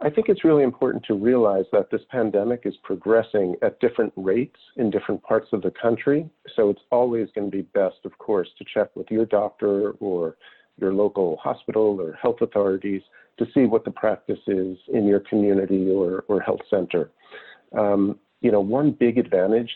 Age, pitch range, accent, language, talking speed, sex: 50-69, 95-115 Hz, American, English, 180 wpm, male